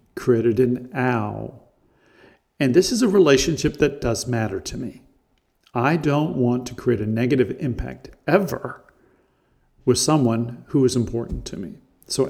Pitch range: 115-135 Hz